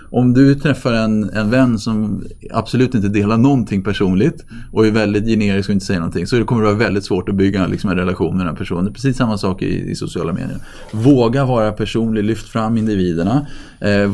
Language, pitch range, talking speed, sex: Swedish, 100-130 Hz, 210 wpm, male